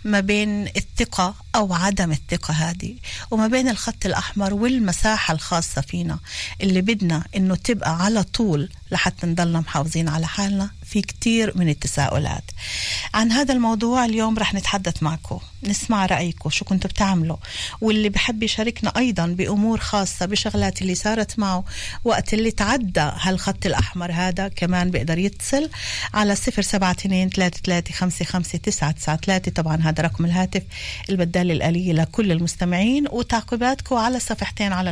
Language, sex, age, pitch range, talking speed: Hebrew, female, 40-59, 170-210 Hz, 125 wpm